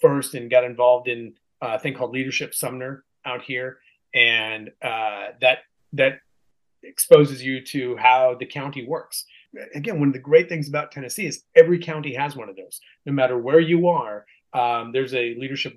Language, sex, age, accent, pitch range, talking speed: English, male, 30-49, American, 125-150 Hz, 180 wpm